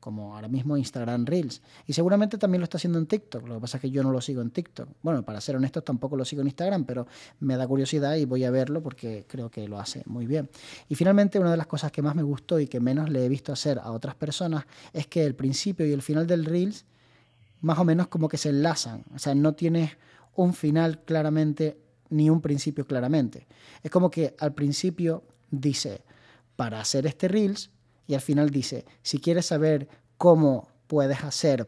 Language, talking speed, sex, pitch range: Spanish, 220 wpm, male, 130-165 Hz